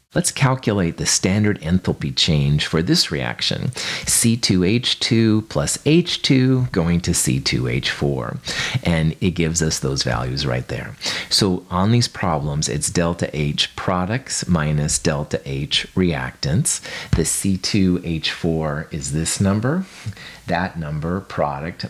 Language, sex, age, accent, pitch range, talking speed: English, male, 40-59, American, 75-105 Hz, 120 wpm